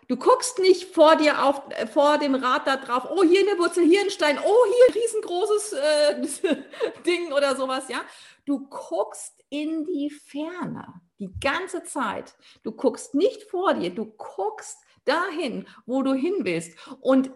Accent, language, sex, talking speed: German, German, female, 165 wpm